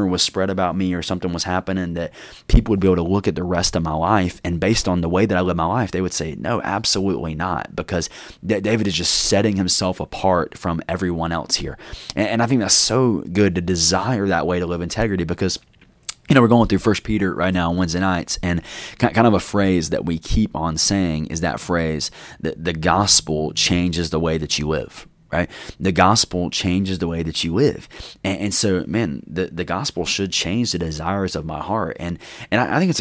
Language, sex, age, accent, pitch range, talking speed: English, male, 20-39, American, 85-95 Hz, 225 wpm